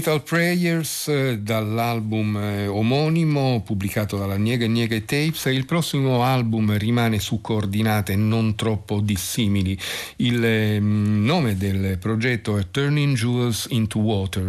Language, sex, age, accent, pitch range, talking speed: Italian, male, 50-69, native, 100-115 Hz, 115 wpm